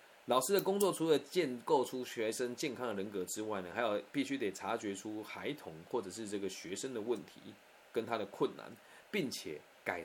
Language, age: Chinese, 20-39